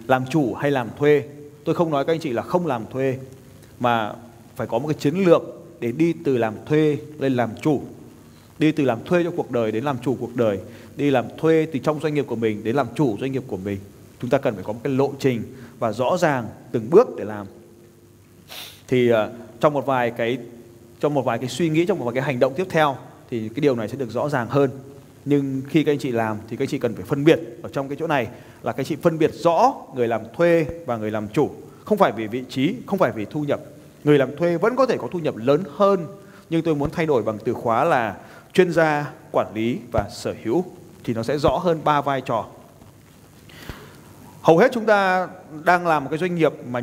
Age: 20-39